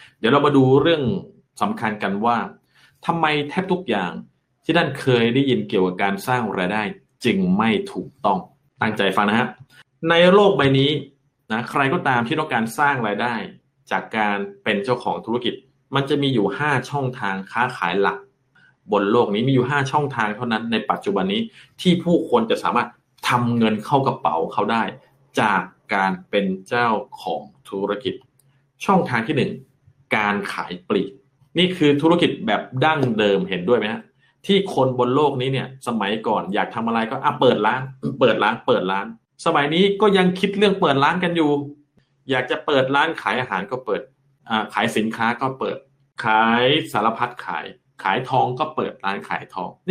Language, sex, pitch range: Thai, male, 115-150 Hz